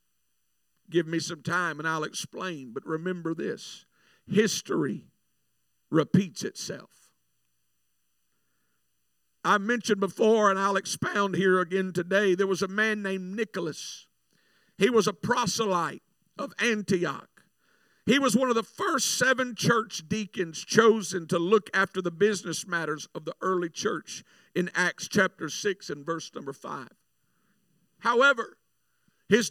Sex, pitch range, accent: male, 175-230 Hz, American